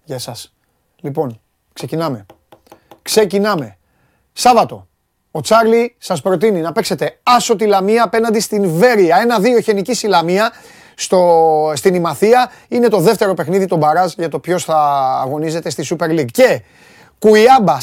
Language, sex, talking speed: Greek, male, 135 wpm